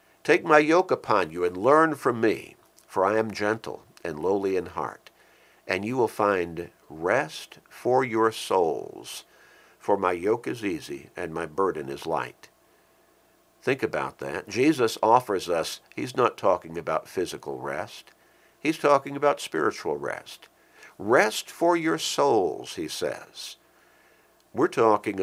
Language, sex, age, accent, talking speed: English, male, 60-79, American, 145 wpm